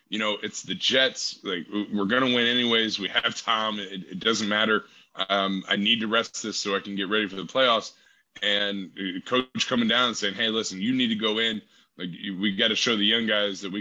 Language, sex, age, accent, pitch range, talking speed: English, male, 20-39, American, 100-125 Hz, 240 wpm